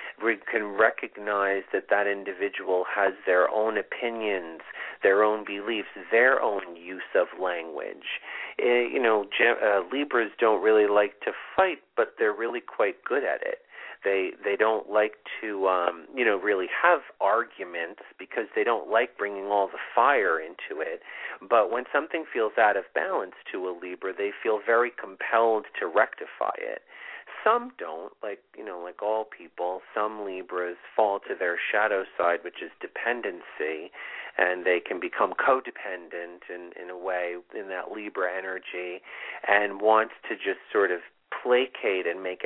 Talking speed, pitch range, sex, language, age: 160 wpm, 90-120 Hz, male, English, 40-59